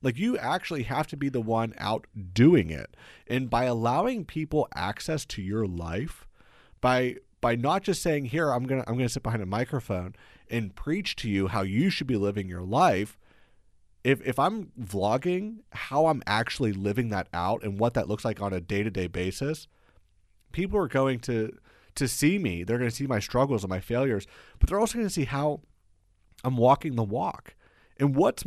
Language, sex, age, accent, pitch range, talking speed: English, male, 30-49, American, 105-145 Hz, 200 wpm